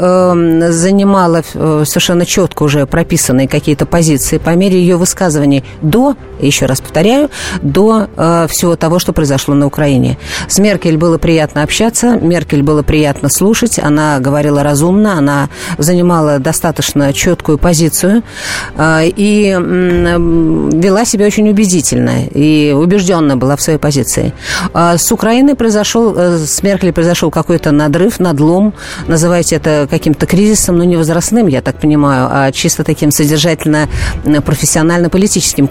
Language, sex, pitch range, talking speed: Russian, female, 150-185 Hz, 125 wpm